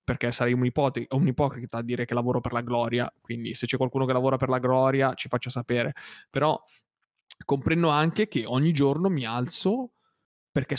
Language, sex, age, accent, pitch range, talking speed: Italian, male, 20-39, native, 130-160 Hz, 180 wpm